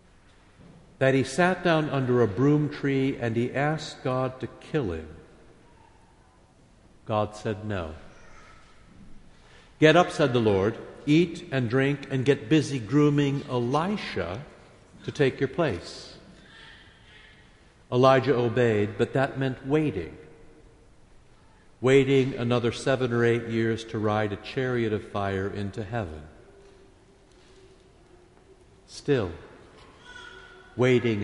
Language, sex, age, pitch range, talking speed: English, male, 60-79, 105-150 Hz, 110 wpm